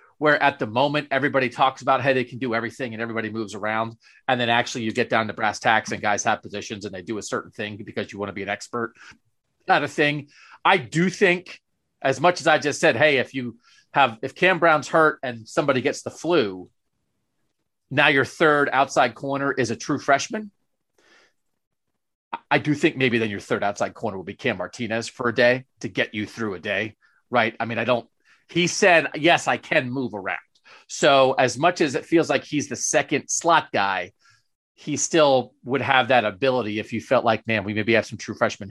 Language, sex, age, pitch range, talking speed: English, male, 30-49, 115-155 Hz, 215 wpm